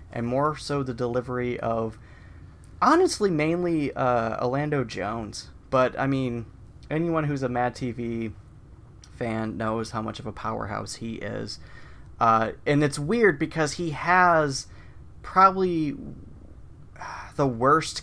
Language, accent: English, American